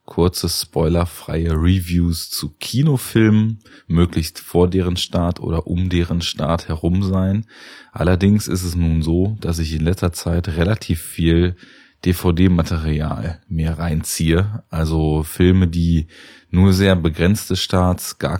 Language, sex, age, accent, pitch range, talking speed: German, male, 20-39, German, 80-95 Hz, 125 wpm